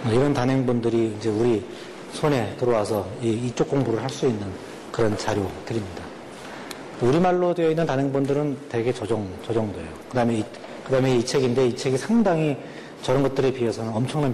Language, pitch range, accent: Korean, 110-150 Hz, native